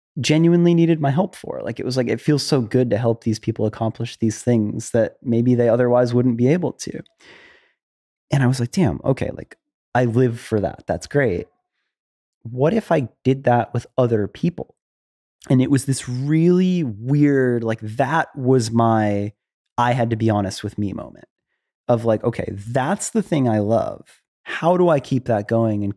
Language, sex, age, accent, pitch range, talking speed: English, male, 20-39, American, 110-135 Hz, 190 wpm